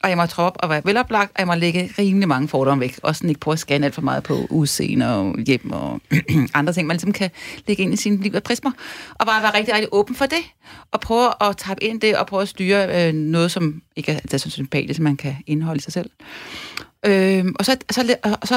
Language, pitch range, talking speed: Danish, 155-210 Hz, 250 wpm